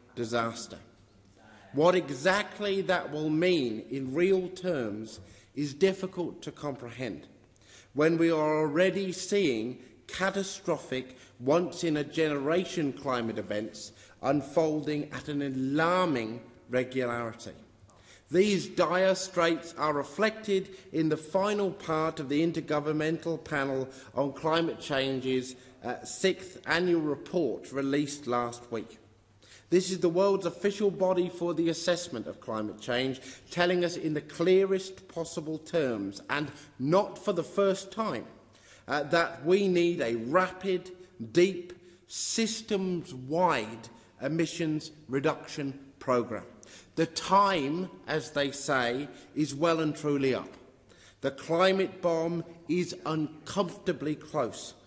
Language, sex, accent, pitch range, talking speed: English, male, British, 125-180 Hz, 110 wpm